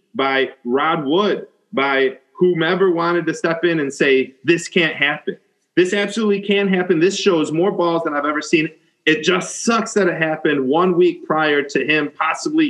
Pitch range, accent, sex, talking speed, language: 135-185 Hz, American, male, 180 wpm, English